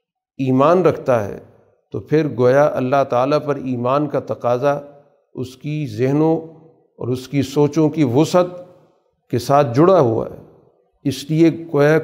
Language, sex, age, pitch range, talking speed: Urdu, male, 50-69, 135-160 Hz, 145 wpm